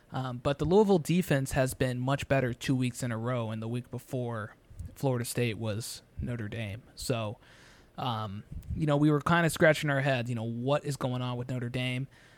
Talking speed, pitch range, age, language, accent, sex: 210 wpm, 120-140 Hz, 20-39, English, American, male